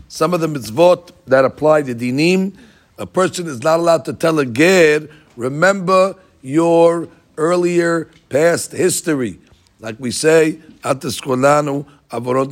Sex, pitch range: male, 125-160 Hz